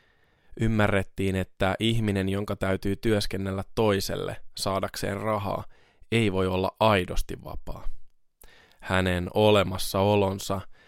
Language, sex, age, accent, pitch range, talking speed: Finnish, male, 20-39, native, 95-115 Hz, 90 wpm